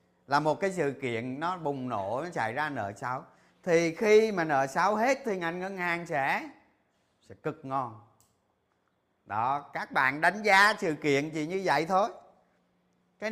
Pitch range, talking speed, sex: 135-200 Hz, 175 wpm, male